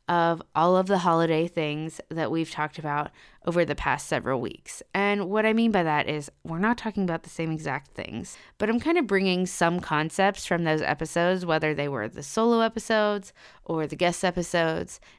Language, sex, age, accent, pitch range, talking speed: English, female, 20-39, American, 160-195 Hz, 200 wpm